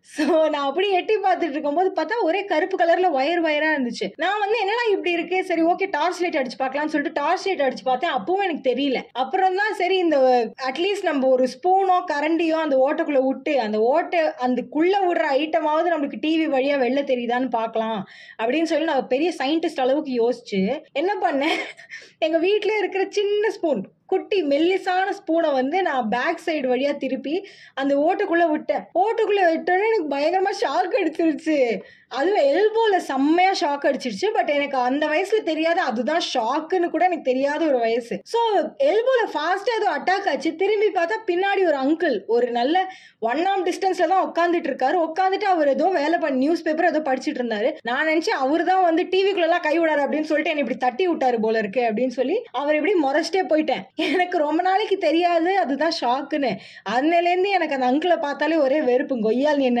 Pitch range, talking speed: 270-365 Hz, 90 wpm